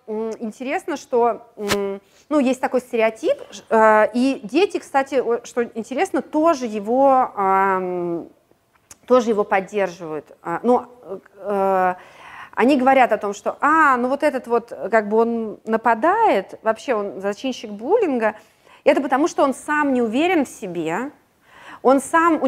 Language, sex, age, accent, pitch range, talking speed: Russian, female, 30-49, native, 205-270 Hz, 115 wpm